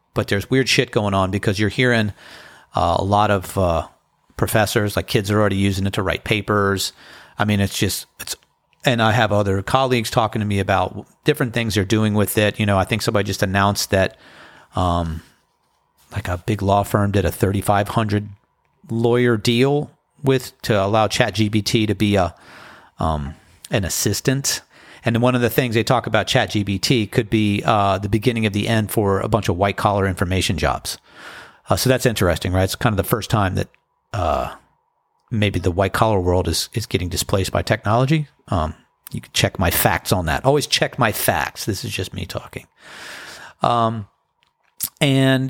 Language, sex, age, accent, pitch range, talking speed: English, male, 40-59, American, 100-120 Hz, 185 wpm